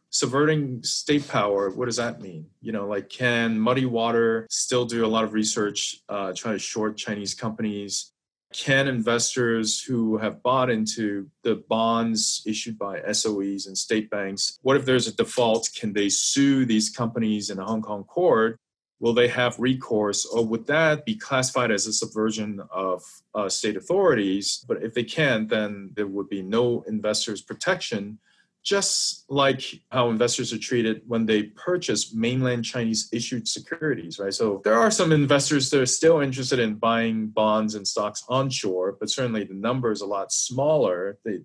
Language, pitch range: English, 105-125 Hz